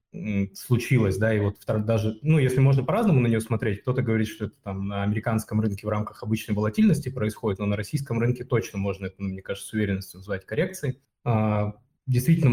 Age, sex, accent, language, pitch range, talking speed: 20-39, male, native, Russian, 100-130 Hz, 185 wpm